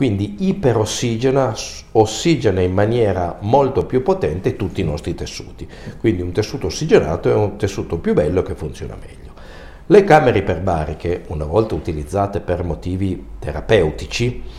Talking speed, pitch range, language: 135 wpm, 85-110 Hz, Italian